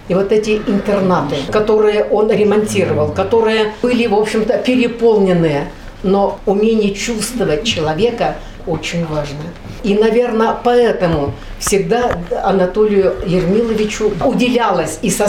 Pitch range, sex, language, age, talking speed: 175-215 Hz, female, Russian, 60-79, 105 wpm